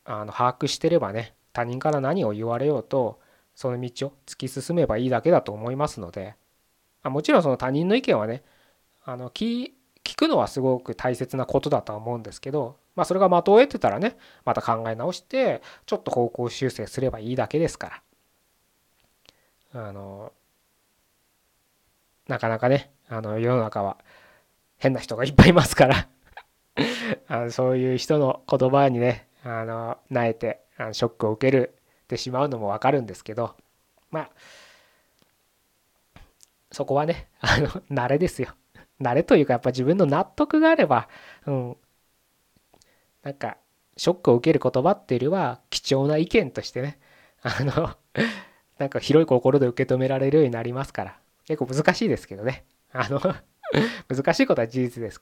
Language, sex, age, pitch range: Japanese, male, 20-39, 120-150 Hz